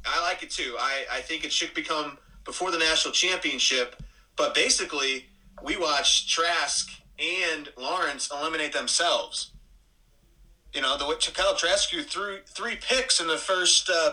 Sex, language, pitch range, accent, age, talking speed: male, English, 130-165 Hz, American, 30-49, 155 wpm